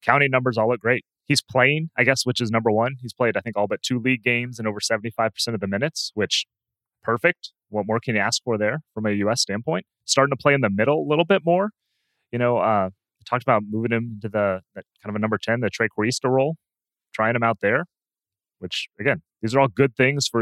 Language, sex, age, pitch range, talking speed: English, male, 30-49, 105-125 Hz, 250 wpm